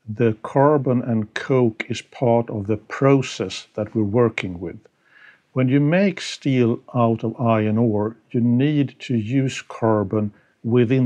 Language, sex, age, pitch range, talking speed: English, male, 50-69, 110-130 Hz, 145 wpm